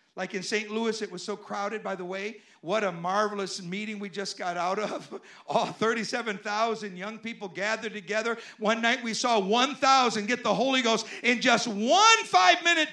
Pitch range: 165-220 Hz